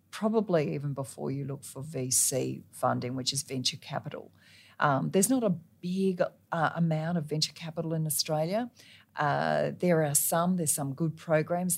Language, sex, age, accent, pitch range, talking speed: English, female, 40-59, Australian, 140-165 Hz, 165 wpm